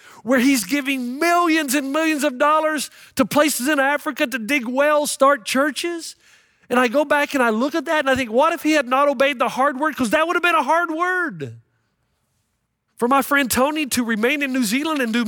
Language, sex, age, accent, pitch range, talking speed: English, male, 40-59, American, 205-295 Hz, 225 wpm